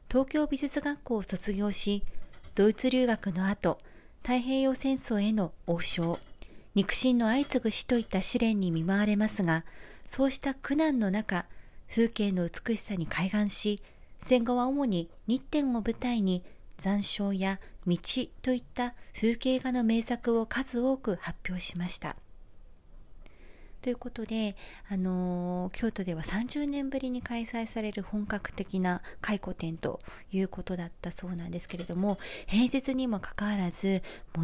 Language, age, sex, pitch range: Japanese, 40-59, female, 185-235 Hz